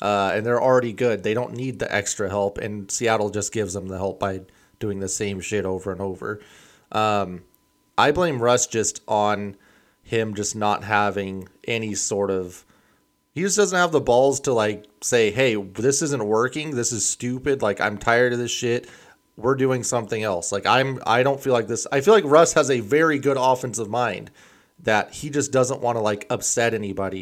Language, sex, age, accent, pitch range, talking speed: English, male, 30-49, American, 105-130 Hz, 200 wpm